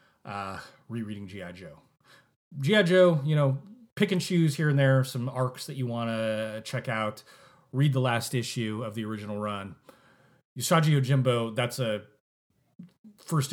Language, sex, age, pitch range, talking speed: English, male, 30-49, 115-150 Hz, 155 wpm